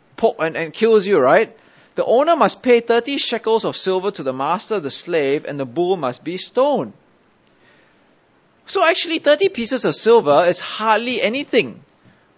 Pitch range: 170-245 Hz